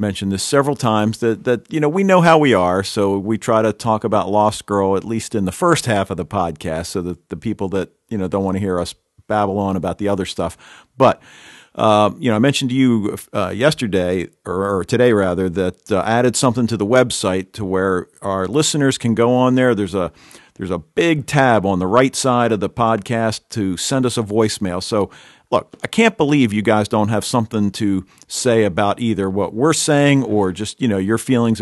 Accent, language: American, English